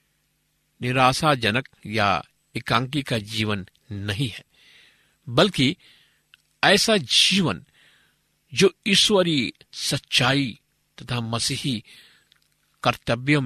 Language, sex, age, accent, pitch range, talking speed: Hindi, male, 50-69, native, 110-150 Hz, 70 wpm